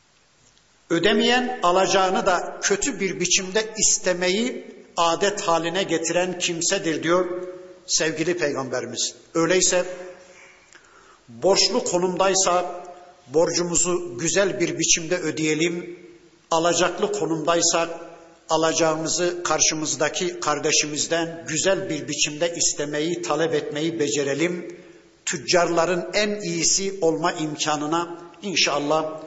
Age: 60-79